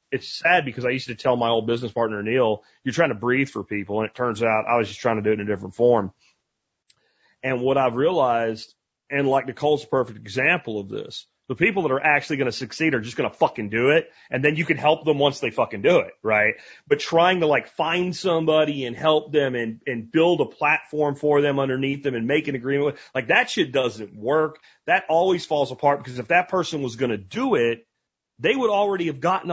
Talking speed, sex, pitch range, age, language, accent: 240 wpm, male, 125-175 Hz, 30-49, English, American